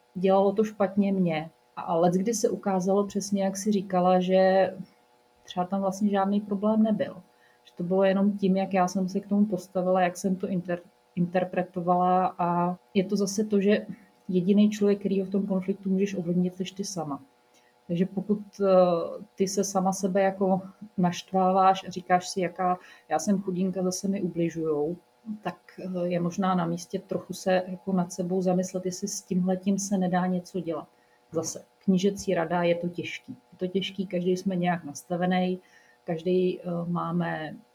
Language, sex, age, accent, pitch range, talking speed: Czech, female, 30-49, native, 170-195 Hz, 170 wpm